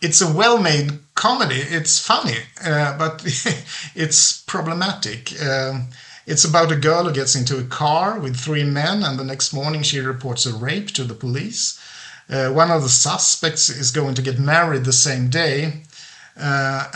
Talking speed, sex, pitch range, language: 170 wpm, male, 135-170 Hz, English